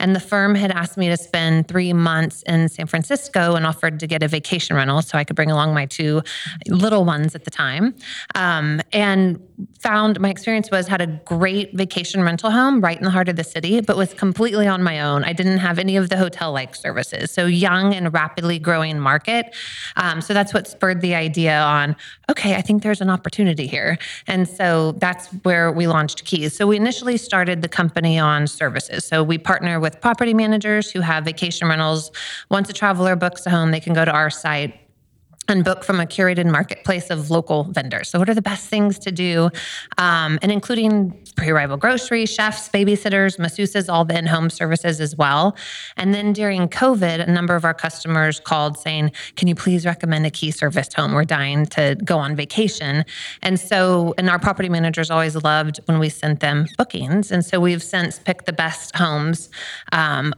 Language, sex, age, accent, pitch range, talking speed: English, female, 30-49, American, 160-195 Hz, 200 wpm